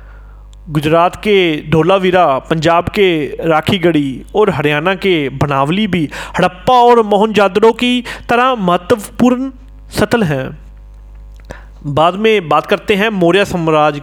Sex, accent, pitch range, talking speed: male, native, 165-235 Hz, 110 wpm